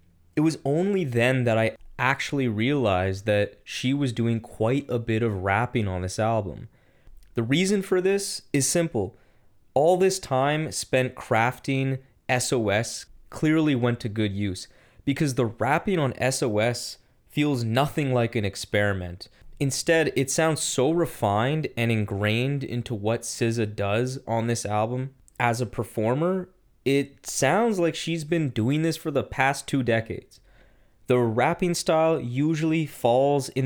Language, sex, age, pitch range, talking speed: English, male, 20-39, 110-135 Hz, 145 wpm